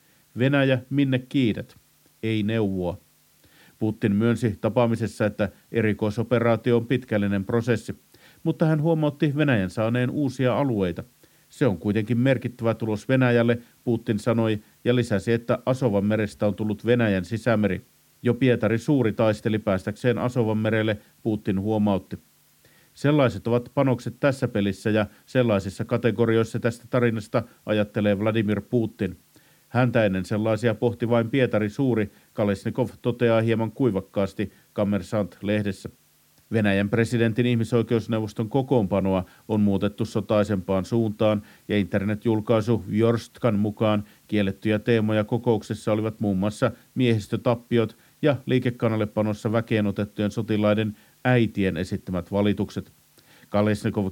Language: Finnish